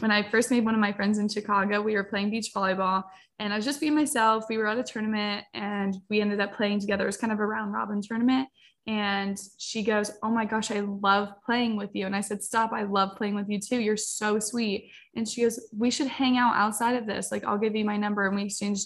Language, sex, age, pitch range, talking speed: English, female, 10-29, 200-225 Hz, 265 wpm